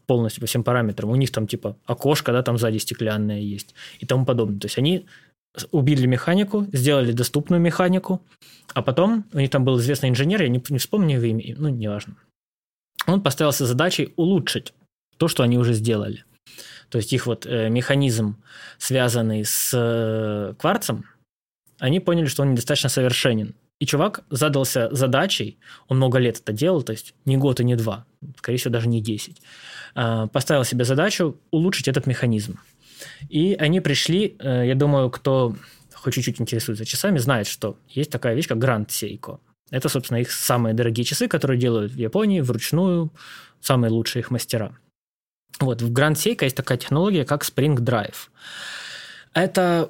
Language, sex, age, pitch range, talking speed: Russian, male, 20-39, 115-150 Hz, 160 wpm